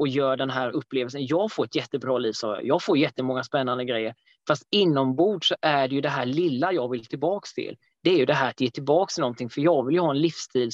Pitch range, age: 130-155 Hz, 20-39